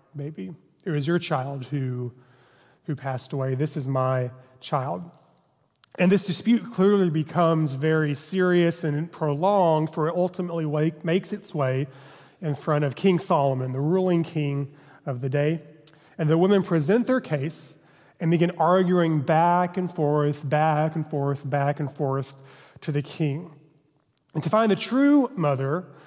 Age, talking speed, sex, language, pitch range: 30-49, 150 wpm, male, English, 145-175 Hz